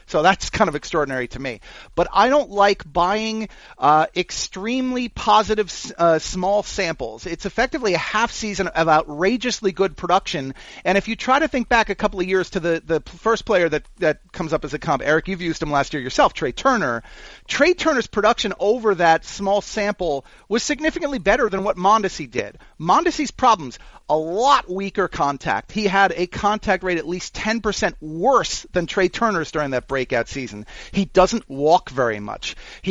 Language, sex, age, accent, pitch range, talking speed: English, male, 40-59, American, 170-220 Hz, 185 wpm